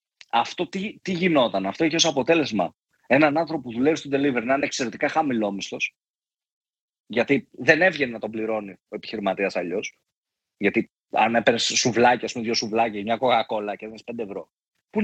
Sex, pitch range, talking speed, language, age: male, 110-160 Hz, 170 wpm, Greek, 30-49